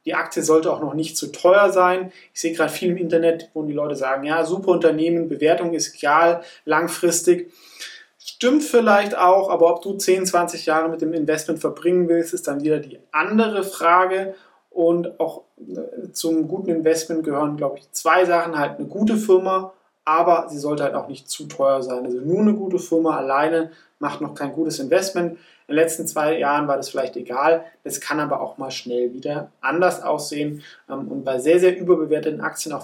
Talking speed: 190 wpm